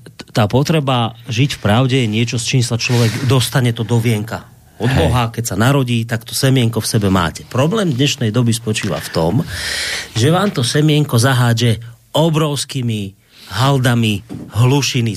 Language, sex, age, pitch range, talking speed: Slovak, male, 40-59, 115-150 Hz, 150 wpm